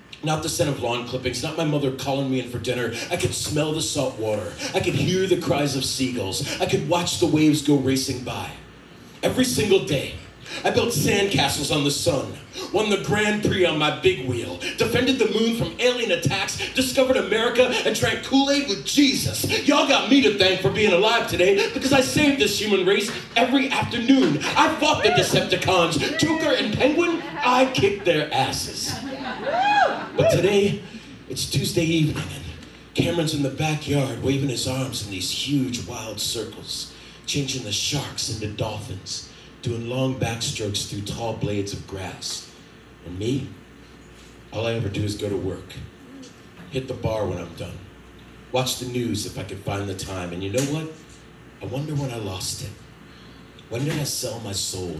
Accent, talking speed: American, 180 wpm